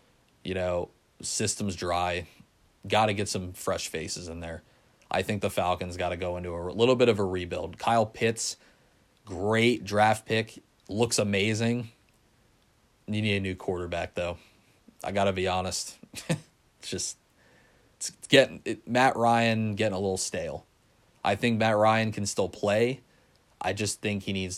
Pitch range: 90-115 Hz